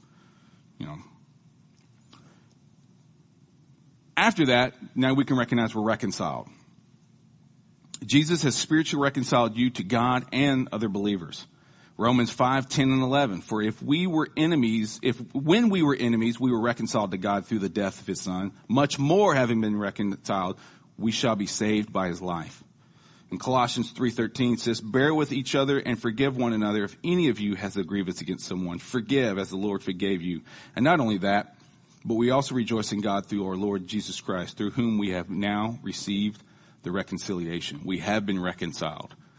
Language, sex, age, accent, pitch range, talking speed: English, male, 40-59, American, 100-130 Hz, 170 wpm